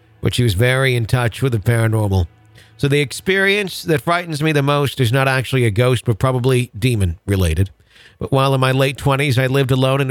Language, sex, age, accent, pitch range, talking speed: English, male, 50-69, American, 110-135 Hz, 215 wpm